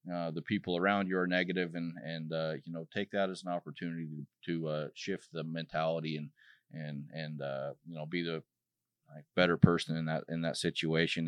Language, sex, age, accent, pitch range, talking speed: English, male, 30-49, American, 80-85 Hz, 200 wpm